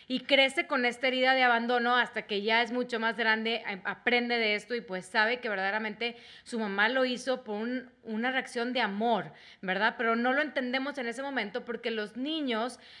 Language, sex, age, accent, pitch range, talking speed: Spanish, female, 30-49, Mexican, 220-265 Hz, 195 wpm